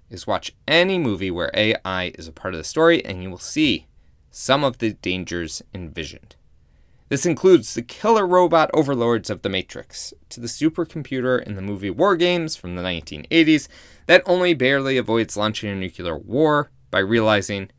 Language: English